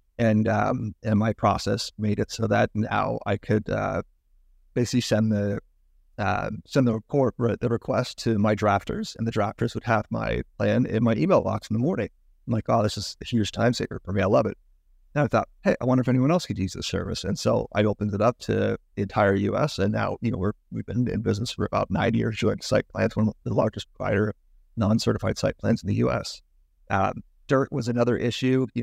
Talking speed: 235 wpm